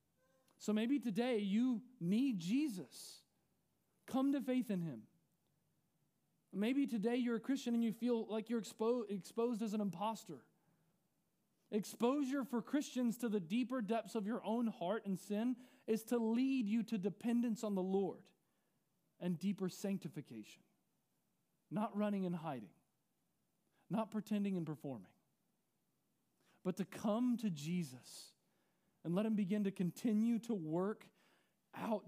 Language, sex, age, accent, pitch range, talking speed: English, male, 40-59, American, 165-225 Hz, 135 wpm